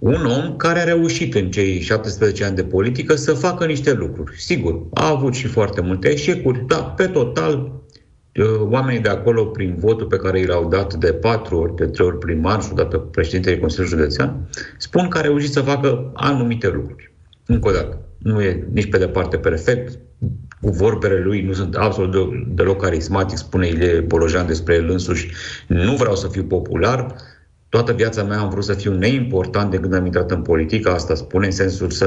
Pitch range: 90-125 Hz